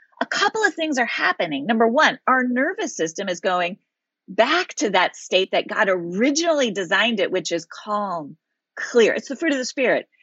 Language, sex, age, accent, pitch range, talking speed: English, female, 40-59, American, 215-310 Hz, 190 wpm